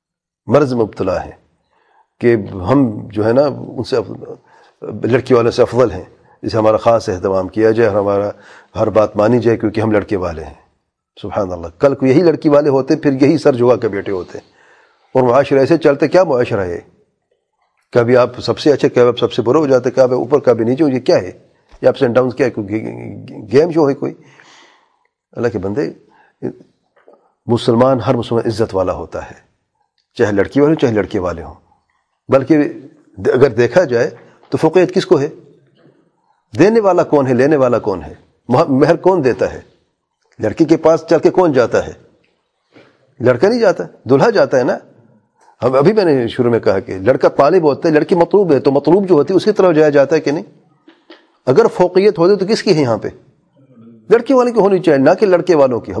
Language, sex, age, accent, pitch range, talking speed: English, male, 40-59, Indian, 115-165 Hz, 140 wpm